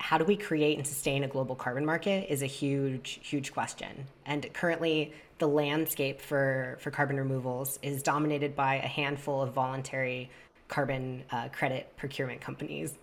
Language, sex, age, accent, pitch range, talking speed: English, female, 20-39, American, 135-155 Hz, 160 wpm